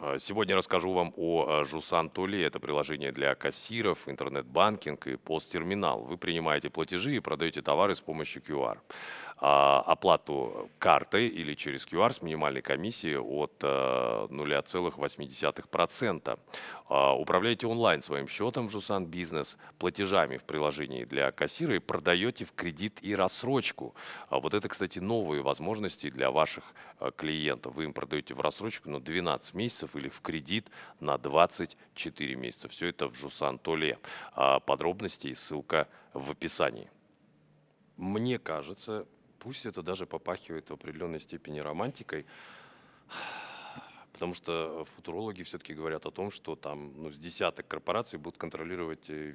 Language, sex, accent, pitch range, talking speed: Russian, male, native, 75-95 Hz, 130 wpm